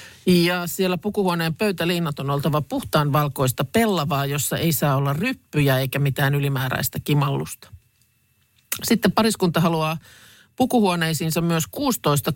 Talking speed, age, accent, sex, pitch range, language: 115 wpm, 50-69, native, male, 125-170 Hz, Finnish